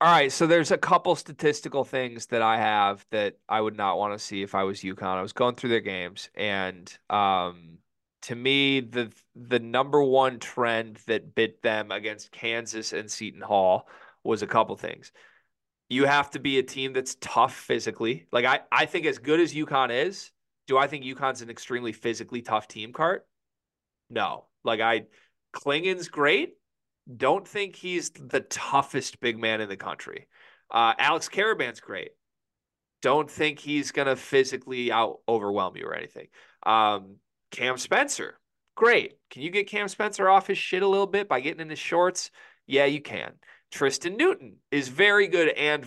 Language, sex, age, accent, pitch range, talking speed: English, male, 20-39, American, 110-165 Hz, 180 wpm